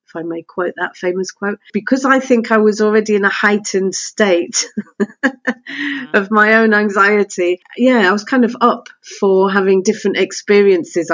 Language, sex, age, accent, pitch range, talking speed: English, female, 40-59, British, 185-230 Hz, 165 wpm